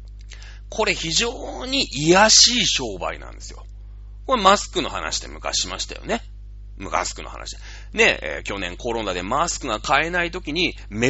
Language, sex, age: Japanese, male, 30-49